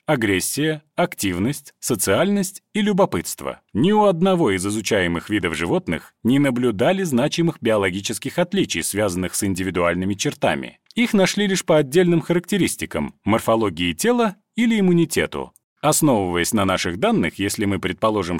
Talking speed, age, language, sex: 125 wpm, 30-49, Russian, male